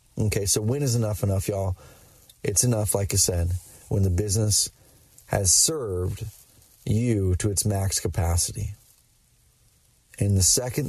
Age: 30-49